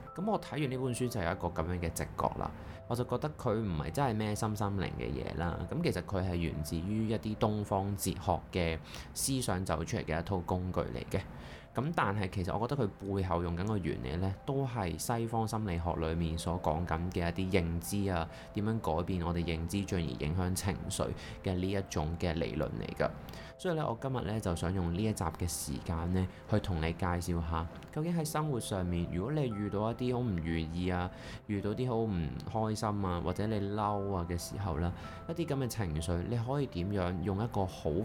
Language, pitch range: Chinese, 85-110 Hz